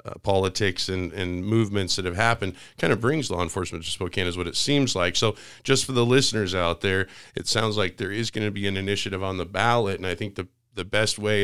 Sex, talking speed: male, 245 wpm